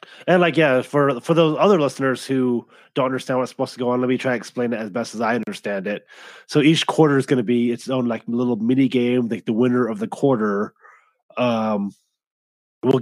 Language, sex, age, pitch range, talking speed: English, male, 20-39, 110-135 Hz, 220 wpm